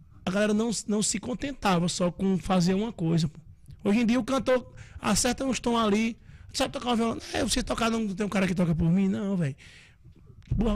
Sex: male